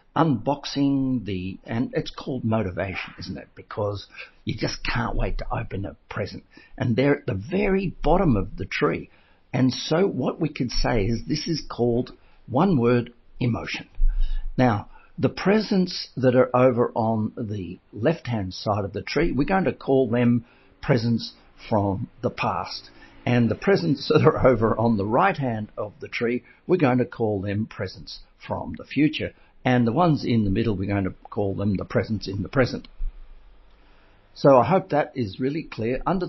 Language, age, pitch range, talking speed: English, 50-69, 105-130 Hz, 180 wpm